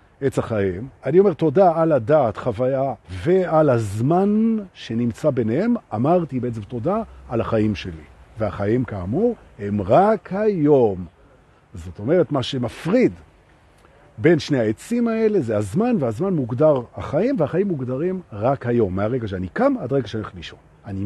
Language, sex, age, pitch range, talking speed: Hebrew, male, 50-69, 110-180 Hz, 135 wpm